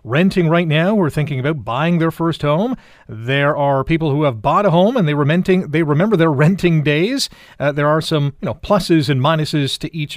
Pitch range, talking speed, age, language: 140-185 Hz, 225 wpm, 40-59, English